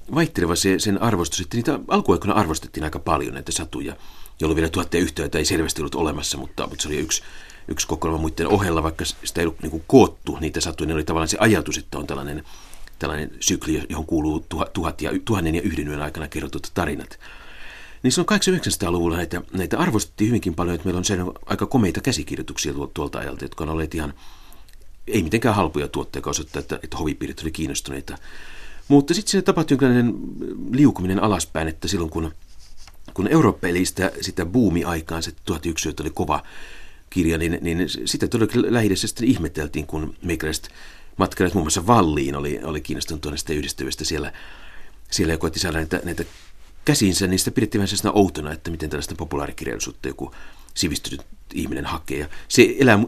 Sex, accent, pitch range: male, native, 80-100 Hz